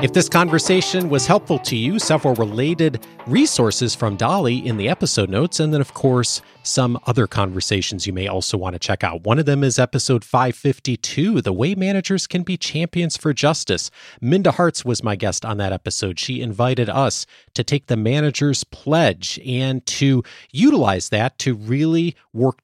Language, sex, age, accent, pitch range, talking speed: English, male, 40-59, American, 105-155 Hz, 180 wpm